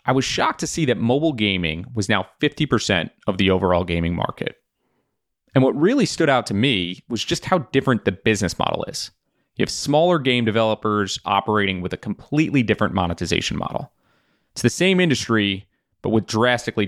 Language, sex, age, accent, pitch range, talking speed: English, male, 30-49, American, 95-125 Hz, 180 wpm